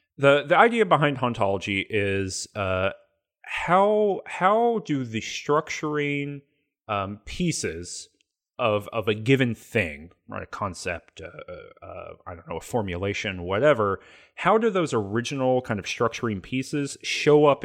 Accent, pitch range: American, 95-135 Hz